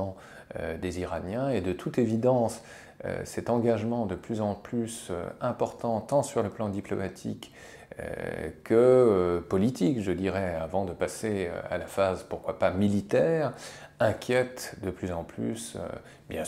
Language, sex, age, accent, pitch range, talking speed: French, male, 30-49, French, 90-115 Hz, 135 wpm